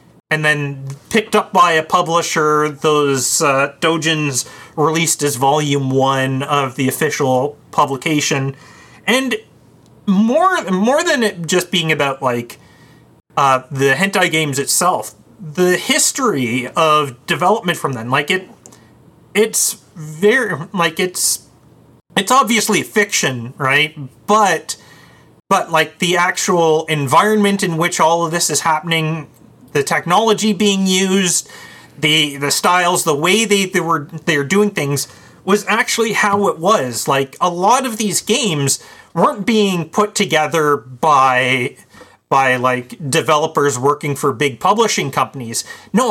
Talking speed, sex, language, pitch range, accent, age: 130 wpm, male, English, 140-200 Hz, American, 30-49